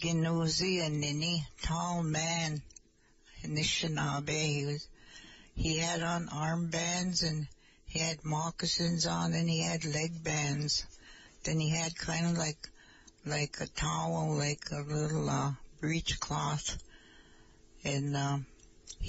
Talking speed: 120 wpm